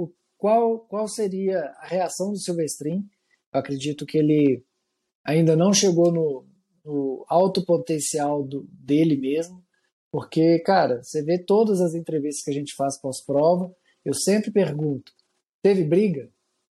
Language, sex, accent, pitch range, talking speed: Portuguese, male, Brazilian, 150-195 Hz, 135 wpm